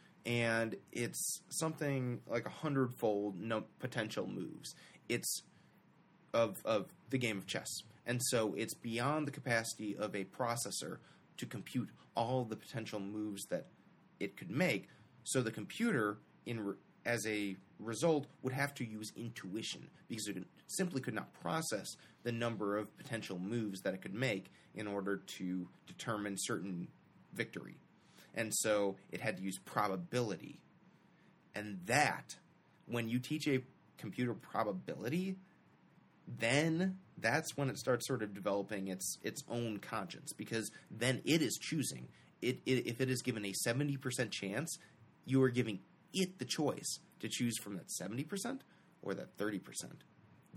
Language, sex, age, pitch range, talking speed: English, male, 30-49, 105-145 Hz, 145 wpm